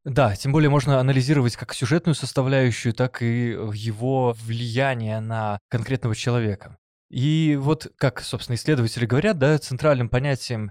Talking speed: 135 wpm